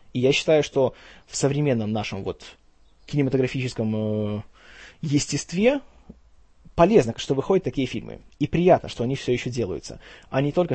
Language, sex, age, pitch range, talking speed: Russian, male, 20-39, 120-170 Hz, 145 wpm